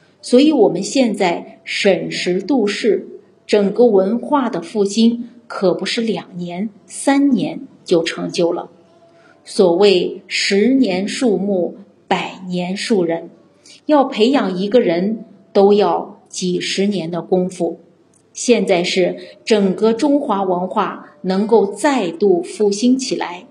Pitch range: 180-245 Hz